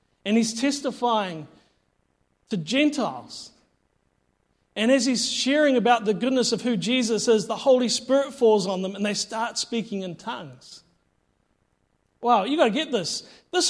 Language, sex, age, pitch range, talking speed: English, male, 40-59, 215-265 Hz, 155 wpm